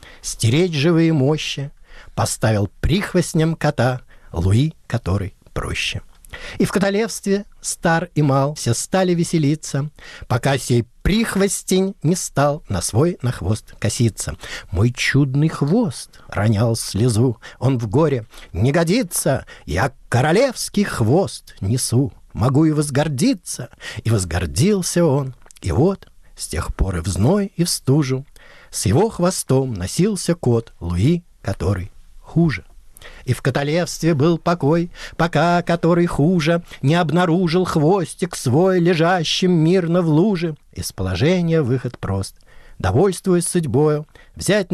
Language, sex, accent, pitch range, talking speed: Russian, male, native, 120-175 Hz, 120 wpm